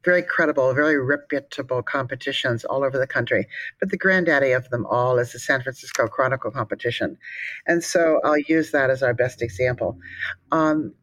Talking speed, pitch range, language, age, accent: 170 wpm, 140-190 Hz, English, 50-69, American